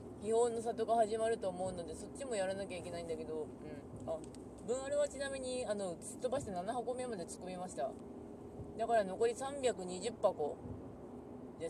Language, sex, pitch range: Japanese, female, 160-240 Hz